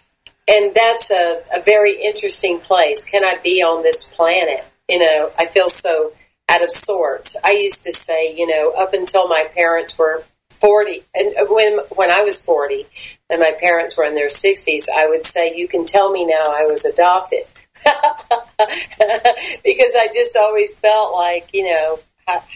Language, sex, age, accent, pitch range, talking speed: English, female, 50-69, American, 165-215 Hz, 175 wpm